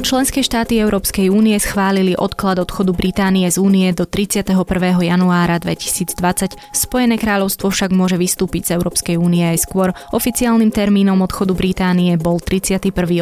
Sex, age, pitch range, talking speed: female, 20-39, 175-200 Hz, 135 wpm